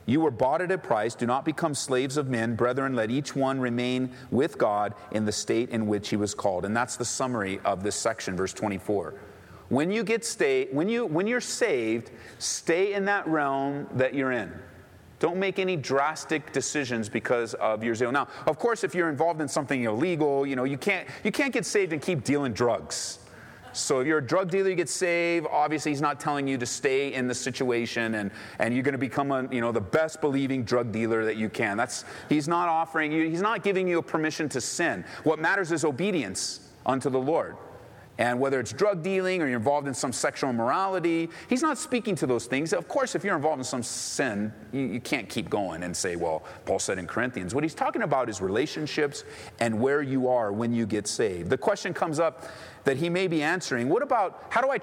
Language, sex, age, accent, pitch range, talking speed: English, male, 30-49, American, 120-170 Hz, 220 wpm